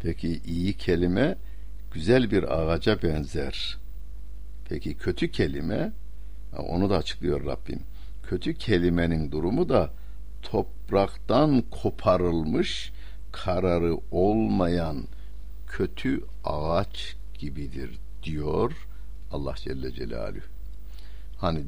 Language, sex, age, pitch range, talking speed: Turkish, male, 60-79, 80-100 Hz, 85 wpm